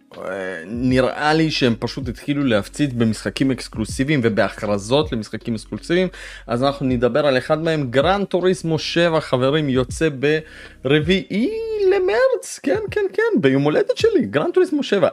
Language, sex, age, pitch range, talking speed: Hebrew, male, 30-49, 105-145 Hz, 120 wpm